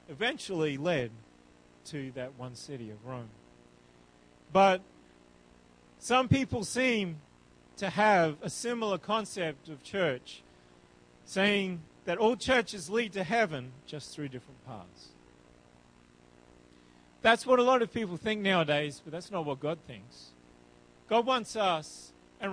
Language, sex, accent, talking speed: English, male, American, 130 wpm